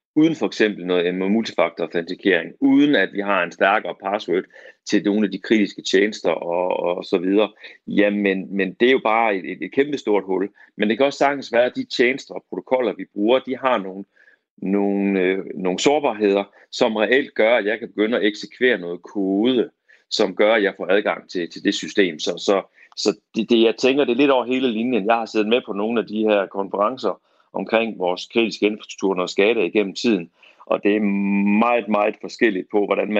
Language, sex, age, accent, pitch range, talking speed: Danish, male, 40-59, native, 100-120 Hz, 200 wpm